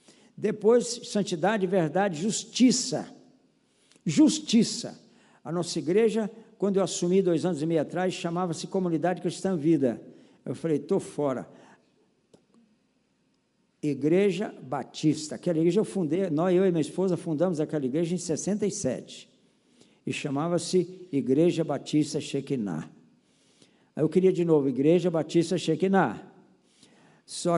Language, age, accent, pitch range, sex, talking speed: Portuguese, 60-79, Brazilian, 150-200 Hz, male, 115 wpm